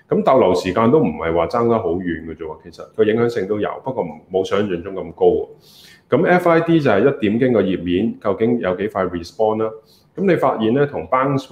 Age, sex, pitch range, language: 20-39, male, 95-140 Hz, Chinese